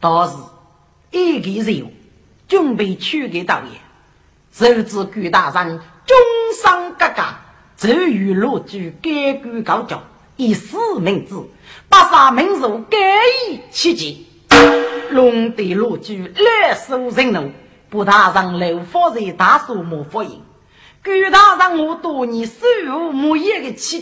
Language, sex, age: Chinese, female, 40-59